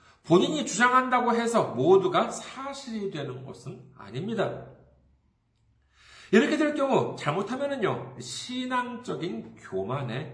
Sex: male